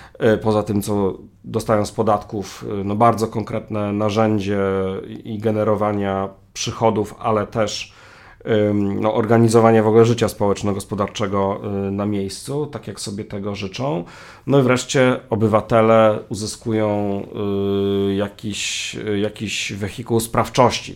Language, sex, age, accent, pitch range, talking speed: Polish, male, 40-59, native, 100-115 Hz, 105 wpm